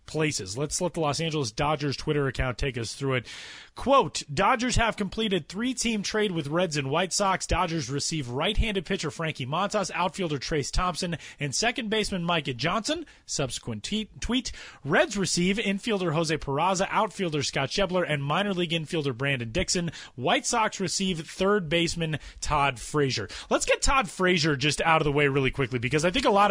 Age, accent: 30-49, American